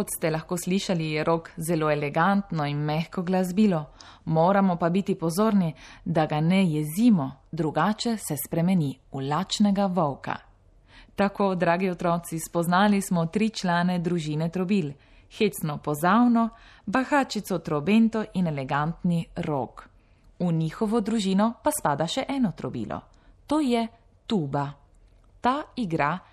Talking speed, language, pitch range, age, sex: 120 wpm, Italian, 155-200 Hz, 20-39, female